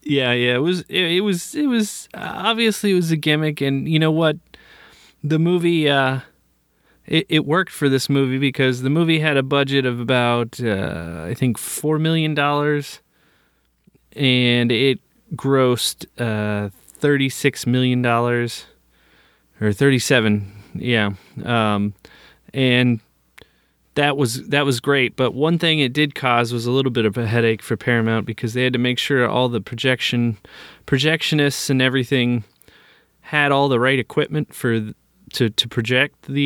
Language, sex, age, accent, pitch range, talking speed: English, male, 20-39, American, 120-145 Hz, 155 wpm